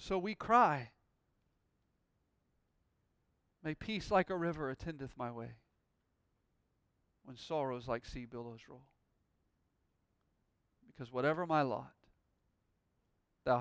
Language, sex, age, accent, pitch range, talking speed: English, male, 40-59, American, 115-135 Hz, 95 wpm